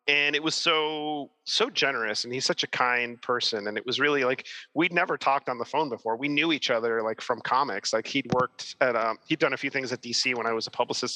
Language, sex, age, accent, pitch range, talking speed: English, male, 30-49, American, 115-140 Hz, 260 wpm